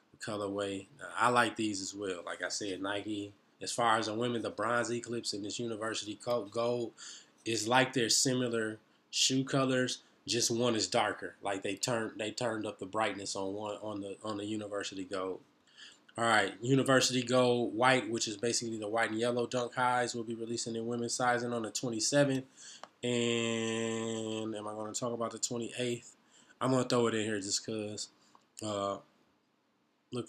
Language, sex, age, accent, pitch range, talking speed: English, male, 20-39, American, 105-120 Hz, 185 wpm